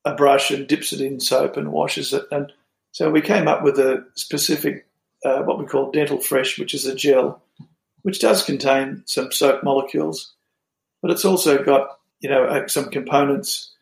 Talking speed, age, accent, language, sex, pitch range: 180 wpm, 50-69, Australian, English, male, 135-145 Hz